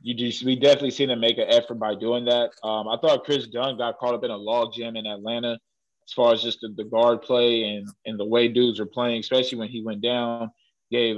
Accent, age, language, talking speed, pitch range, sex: American, 20-39, English, 250 wpm, 110-125 Hz, male